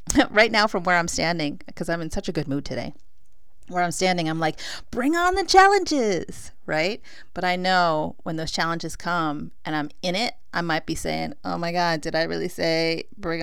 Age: 30-49